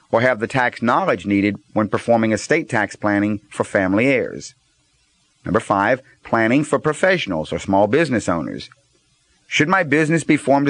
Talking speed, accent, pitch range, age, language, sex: 155 wpm, American, 115-150 Hz, 40-59, English, male